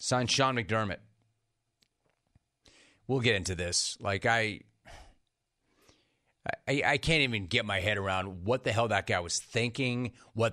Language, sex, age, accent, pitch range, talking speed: English, male, 40-59, American, 110-145 Hz, 140 wpm